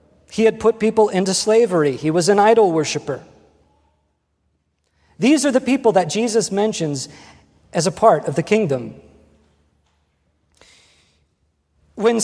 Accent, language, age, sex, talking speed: American, English, 40-59, male, 125 wpm